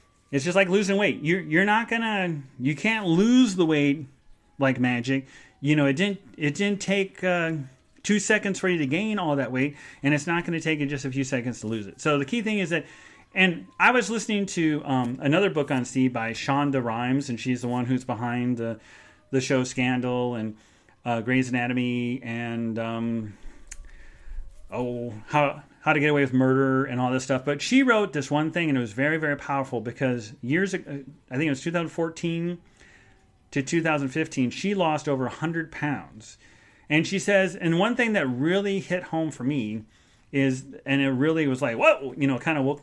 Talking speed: 205 wpm